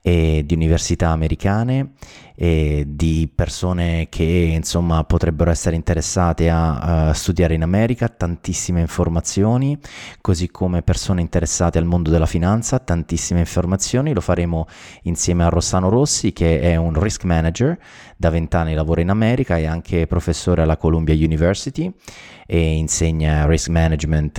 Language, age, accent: Italian, 30-49, native